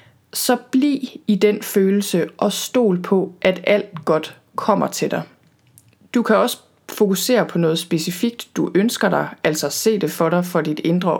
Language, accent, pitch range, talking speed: Danish, native, 180-220 Hz, 170 wpm